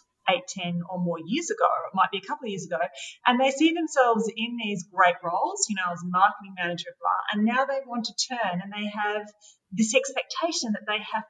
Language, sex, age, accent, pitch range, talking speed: English, female, 30-49, Australian, 185-260 Hz, 240 wpm